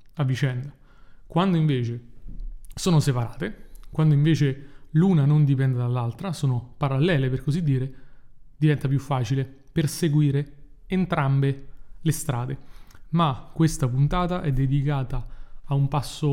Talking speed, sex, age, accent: 115 wpm, male, 30-49, native